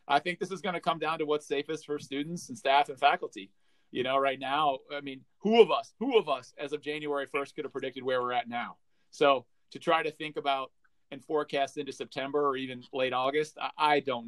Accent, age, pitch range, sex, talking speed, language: American, 40-59, 135-155 Hz, male, 235 wpm, English